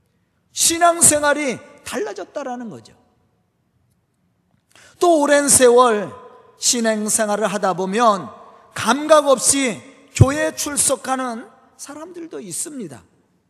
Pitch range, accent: 235-310 Hz, native